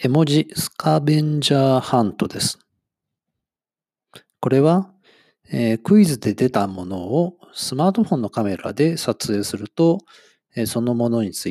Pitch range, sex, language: 115-155 Hz, male, Japanese